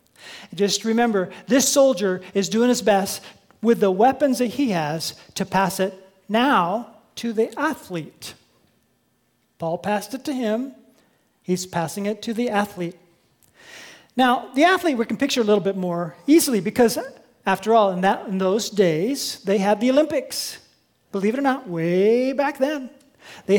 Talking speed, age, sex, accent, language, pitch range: 160 wpm, 40-59, male, American, English, 205-265 Hz